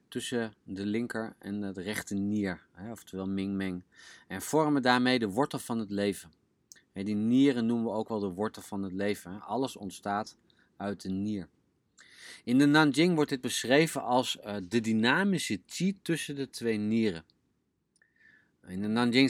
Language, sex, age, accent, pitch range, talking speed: Dutch, male, 30-49, Dutch, 100-125 Hz, 170 wpm